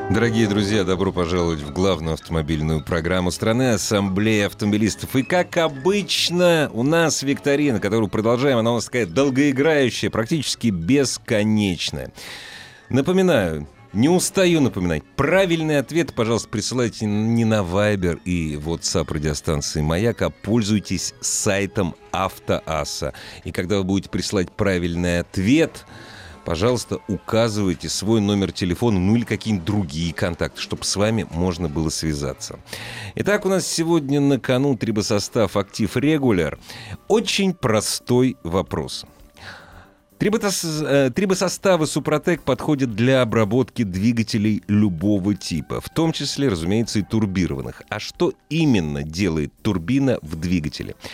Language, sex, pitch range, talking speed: Russian, male, 95-135 Hz, 120 wpm